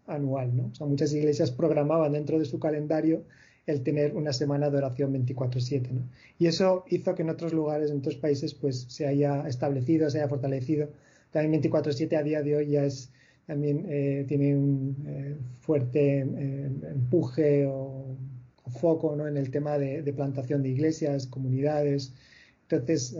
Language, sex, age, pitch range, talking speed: Spanish, male, 30-49, 140-155 Hz, 170 wpm